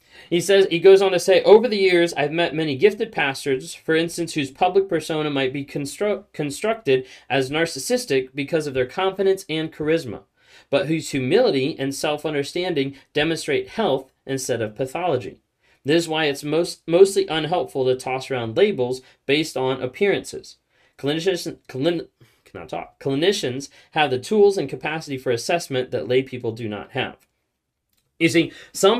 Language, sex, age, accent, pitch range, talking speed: English, male, 30-49, American, 135-170 Hz, 160 wpm